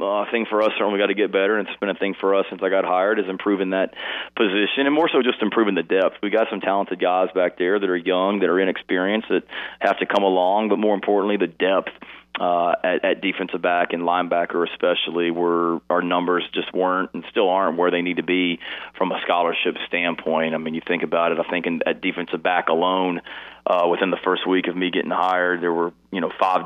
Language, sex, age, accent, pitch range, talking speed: English, male, 30-49, American, 85-100 Hz, 240 wpm